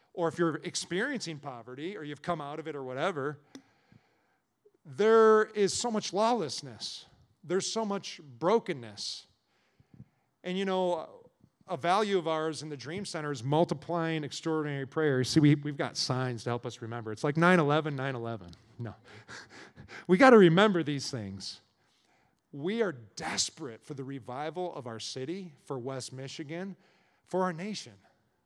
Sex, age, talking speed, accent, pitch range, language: male, 40-59, 155 wpm, American, 150-215 Hz, English